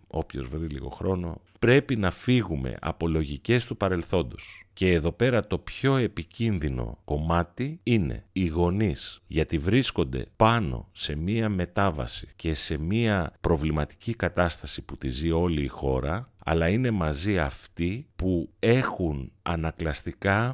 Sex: male